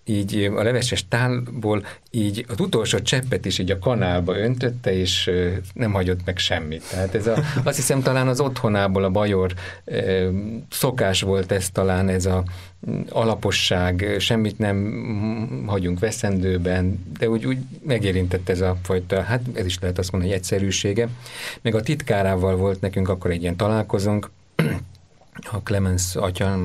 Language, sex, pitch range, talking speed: Hungarian, male, 90-110 Hz, 150 wpm